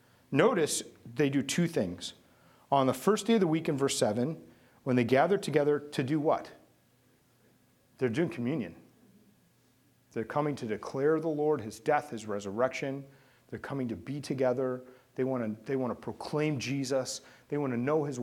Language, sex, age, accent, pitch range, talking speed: English, male, 40-59, American, 130-200 Hz, 170 wpm